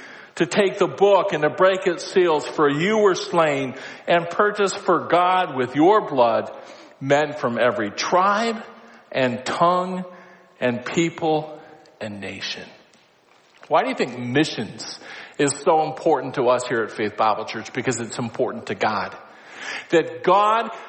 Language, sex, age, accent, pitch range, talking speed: English, male, 50-69, American, 155-205 Hz, 150 wpm